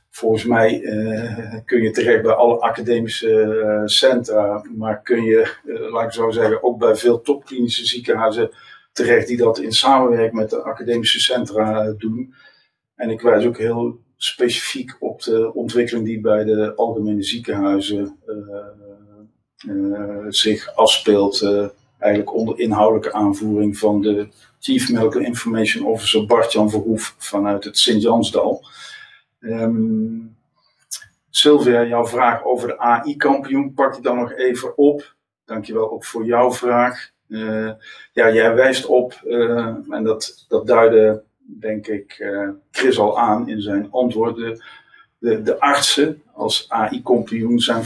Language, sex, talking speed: Dutch, male, 140 wpm